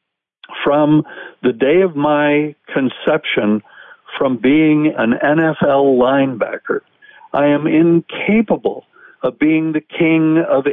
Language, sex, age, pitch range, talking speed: English, male, 60-79, 120-185 Hz, 105 wpm